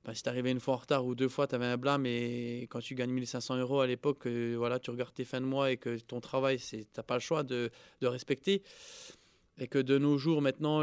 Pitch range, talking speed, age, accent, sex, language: 125-145 Hz, 270 wpm, 20-39, French, male, French